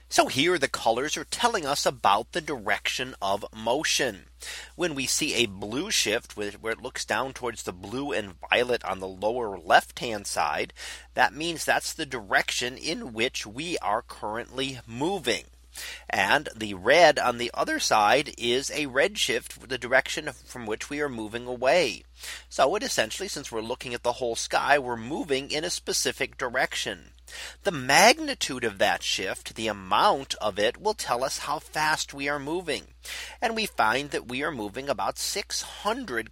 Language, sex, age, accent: English, male, 40-59, American